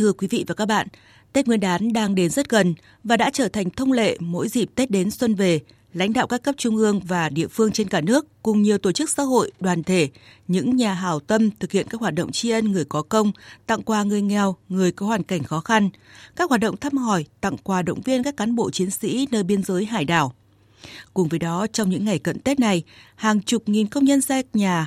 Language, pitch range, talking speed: Vietnamese, 170-220 Hz, 250 wpm